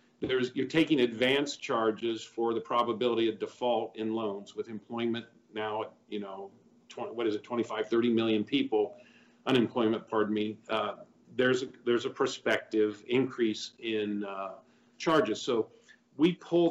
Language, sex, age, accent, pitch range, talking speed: English, male, 50-69, American, 115-155 Hz, 135 wpm